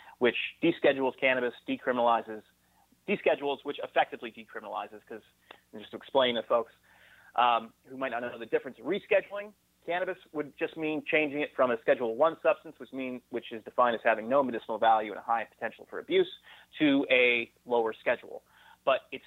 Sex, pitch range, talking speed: male, 115-150 Hz, 170 wpm